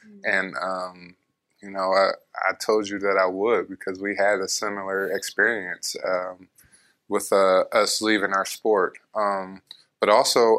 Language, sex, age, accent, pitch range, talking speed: English, male, 20-39, American, 95-110 Hz, 155 wpm